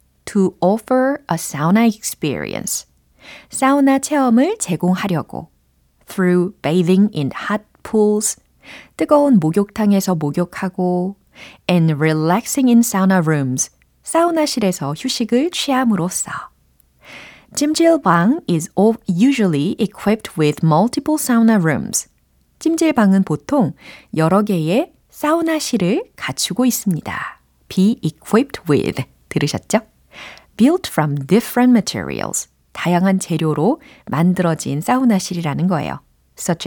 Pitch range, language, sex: 160-240 Hz, Korean, female